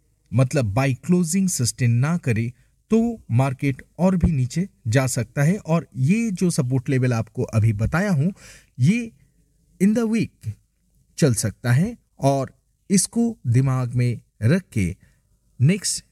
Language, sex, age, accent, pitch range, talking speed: Hindi, male, 50-69, native, 120-185 Hz, 140 wpm